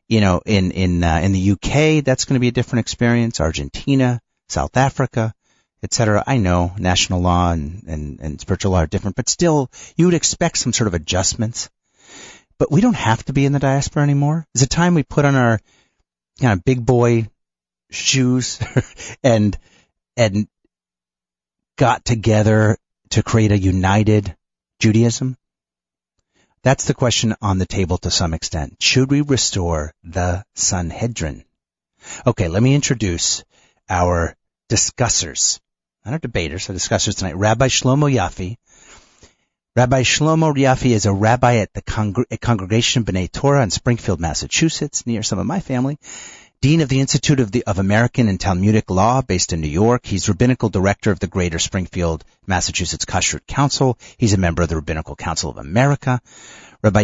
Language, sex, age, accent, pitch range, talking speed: English, male, 40-59, American, 90-125 Hz, 160 wpm